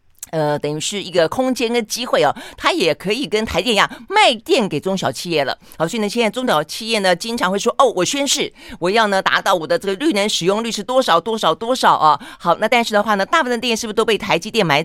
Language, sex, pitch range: Chinese, female, 155-225 Hz